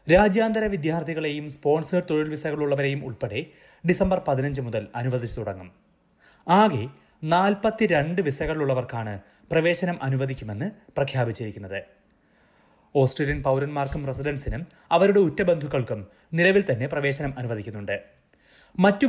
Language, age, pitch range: Malayalam, 30-49, 130-175 Hz